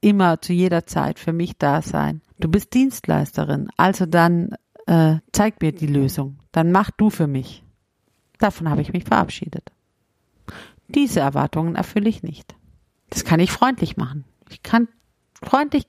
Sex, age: female, 50-69